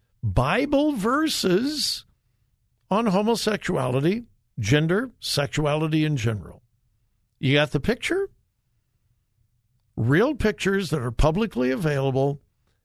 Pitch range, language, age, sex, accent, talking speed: 115-180 Hz, English, 60-79, male, American, 85 wpm